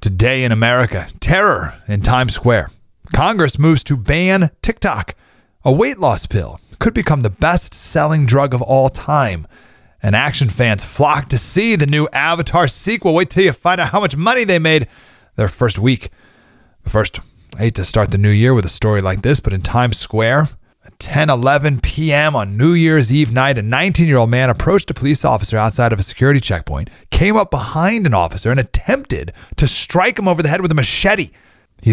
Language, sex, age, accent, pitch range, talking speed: English, male, 30-49, American, 105-150 Hz, 190 wpm